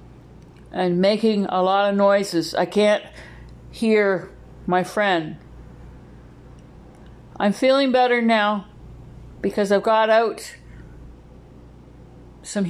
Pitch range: 165-220 Hz